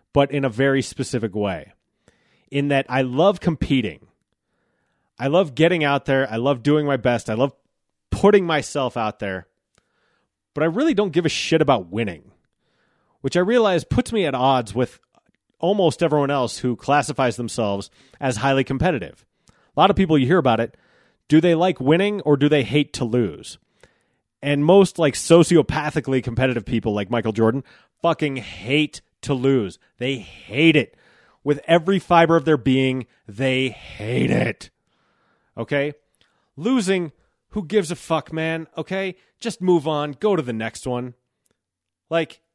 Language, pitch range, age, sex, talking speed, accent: English, 125-170 Hz, 30-49, male, 160 wpm, American